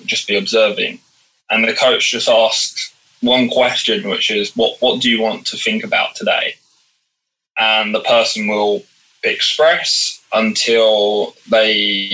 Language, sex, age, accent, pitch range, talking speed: English, male, 20-39, British, 110-155 Hz, 140 wpm